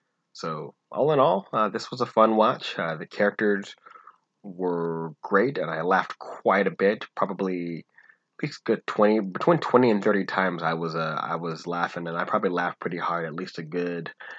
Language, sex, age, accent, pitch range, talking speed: English, male, 30-49, American, 85-100 Hz, 200 wpm